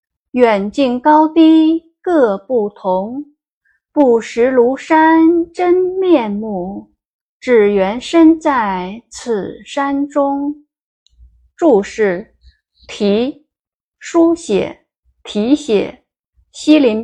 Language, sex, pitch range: Chinese, female, 200-295 Hz